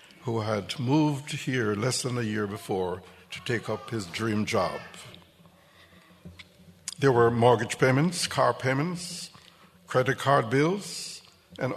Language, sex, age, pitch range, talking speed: English, male, 60-79, 100-135 Hz, 130 wpm